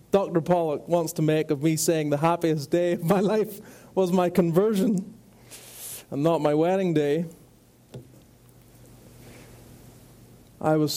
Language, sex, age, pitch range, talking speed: English, male, 30-49, 140-175 Hz, 130 wpm